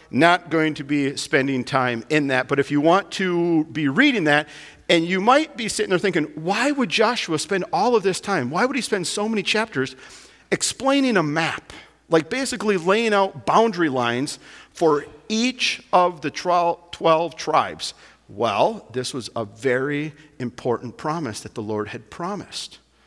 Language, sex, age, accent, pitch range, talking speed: English, male, 50-69, American, 135-185 Hz, 170 wpm